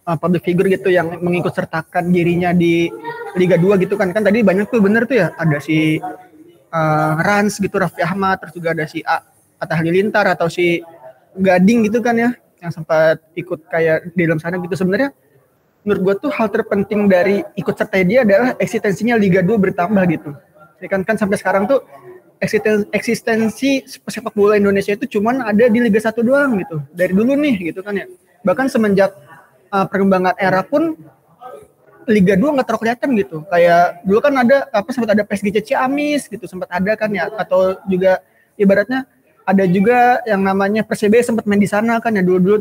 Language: Indonesian